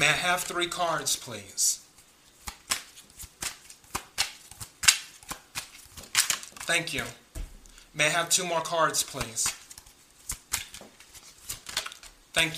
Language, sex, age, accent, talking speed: English, male, 30-49, American, 75 wpm